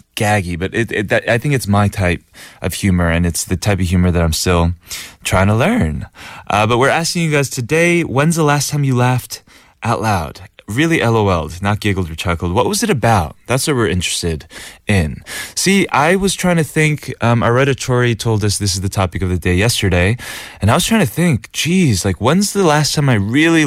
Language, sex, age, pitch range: Korean, male, 20-39, 95-135 Hz